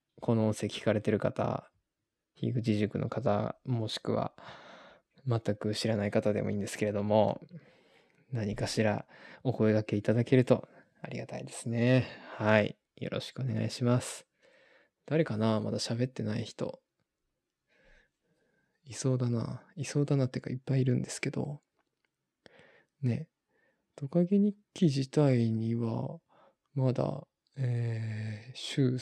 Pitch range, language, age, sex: 110-135 Hz, Japanese, 20-39, male